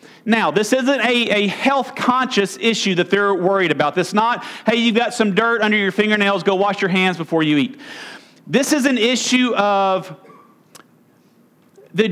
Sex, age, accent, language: male, 40-59, American, English